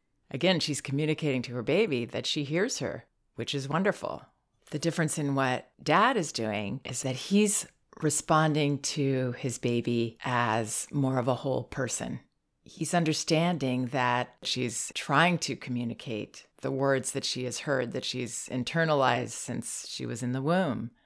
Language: English